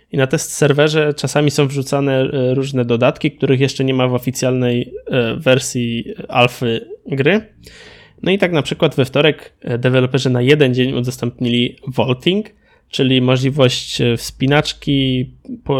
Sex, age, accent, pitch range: male, 20-39, native, 125-145 Hz